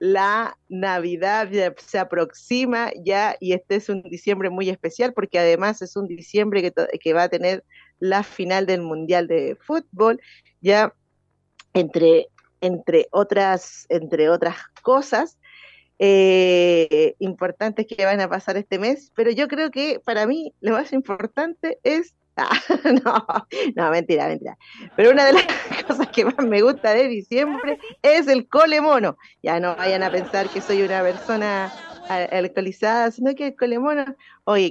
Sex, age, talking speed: female, 40-59, 150 wpm